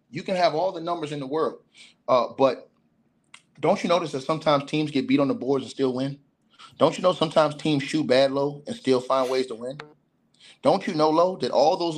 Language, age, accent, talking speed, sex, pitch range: English, 30-49, American, 230 wpm, male, 130-155 Hz